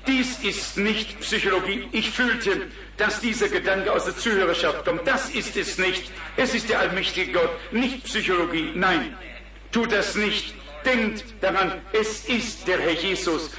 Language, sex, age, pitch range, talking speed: German, male, 50-69, 190-230 Hz, 155 wpm